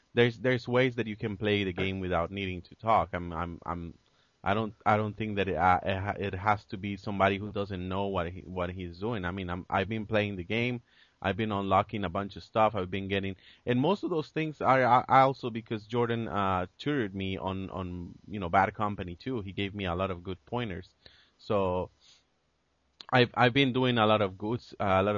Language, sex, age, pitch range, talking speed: English, male, 30-49, 95-110 Hz, 230 wpm